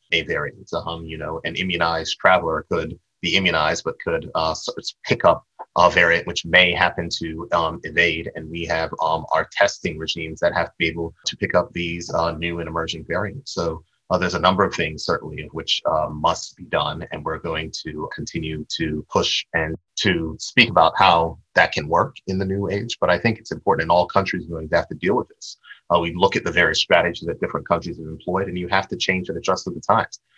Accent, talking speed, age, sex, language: American, 225 wpm, 30-49, male, English